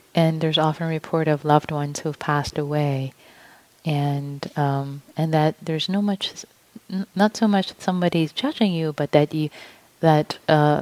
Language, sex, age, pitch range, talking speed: English, female, 30-49, 140-165 Hz, 165 wpm